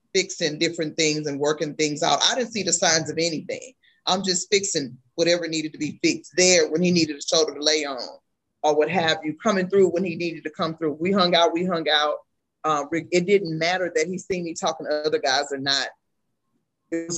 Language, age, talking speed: English, 20-39, 225 wpm